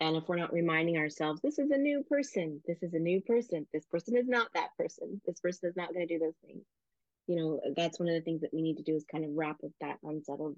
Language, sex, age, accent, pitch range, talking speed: English, female, 30-49, American, 165-195 Hz, 285 wpm